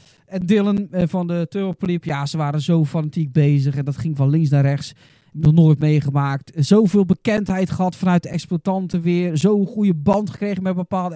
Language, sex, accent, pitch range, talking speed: Dutch, male, Dutch, 150-185 Hz, 185 wpm